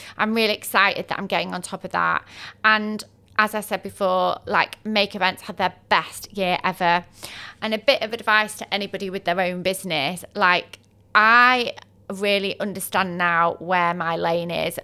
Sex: female